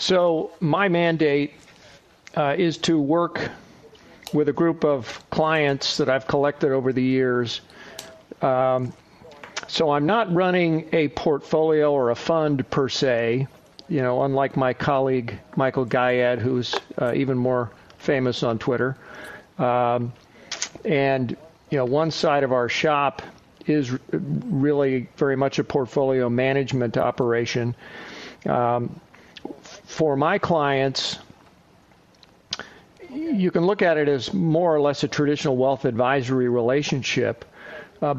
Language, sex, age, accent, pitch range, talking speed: English, male, 50-69, American, 130-155 Hz, 125 wpm